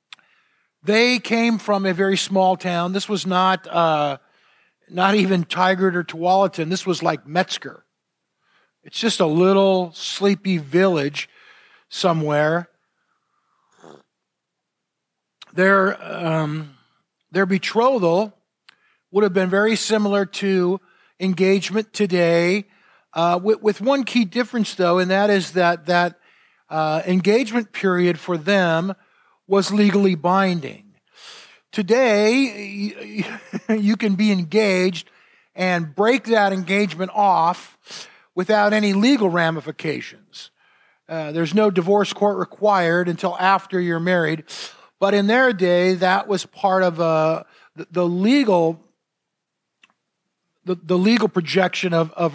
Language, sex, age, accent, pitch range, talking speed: English, male, 50-69, American, 175-205 Hz, 115 wpm